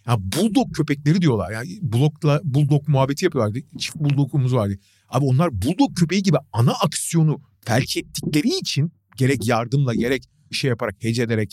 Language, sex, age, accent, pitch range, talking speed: Turkish, male, 40-59, native, 120-190 Hz, 145 wpm